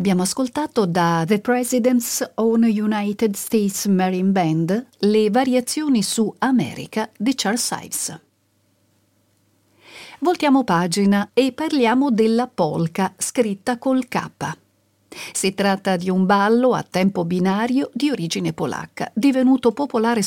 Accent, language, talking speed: native, Italian, 115 wpm